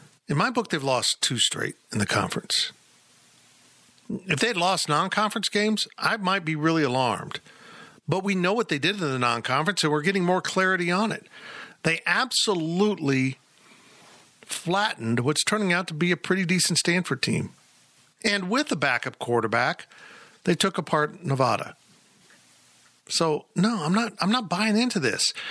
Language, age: English, 50-69